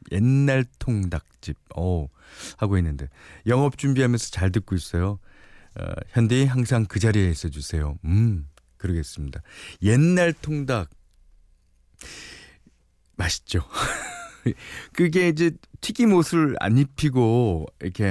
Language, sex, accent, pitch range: Korean, male, native, 85-130 Hz